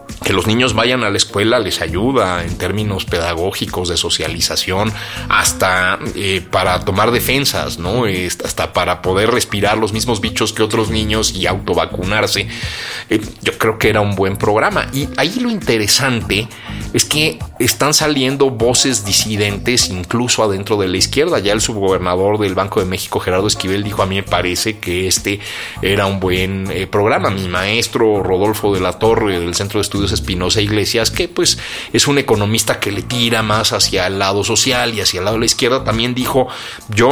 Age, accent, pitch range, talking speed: 30-49, Mexican, 100-125 Hz, 180 wpm